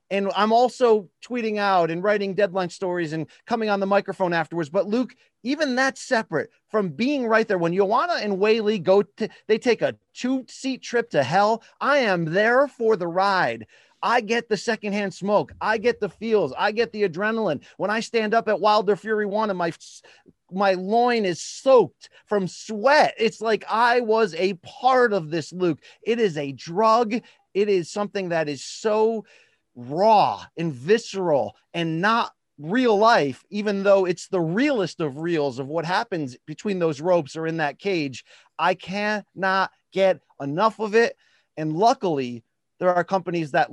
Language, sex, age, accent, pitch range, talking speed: English, male, 30-49, American, 165-220 Hz, 175 wpm